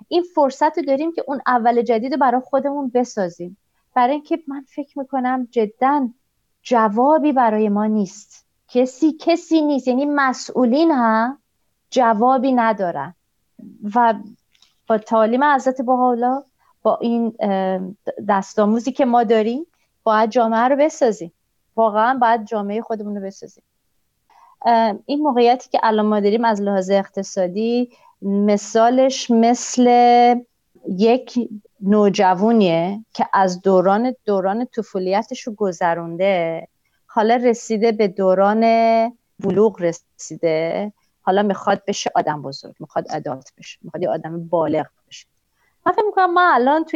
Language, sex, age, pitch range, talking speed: Persian, female, 30-49, 200-255 Hz, 120 wpm